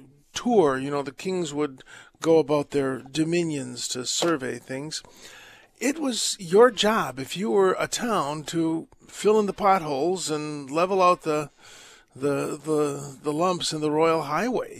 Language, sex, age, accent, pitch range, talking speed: English, male, 50-69, American, 140-180 Hz, 160 wpm